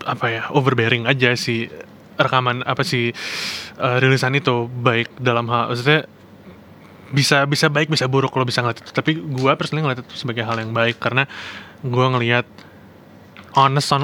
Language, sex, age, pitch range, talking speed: Indonesian, male, 20-39, 115-140 Hz, 150 wpm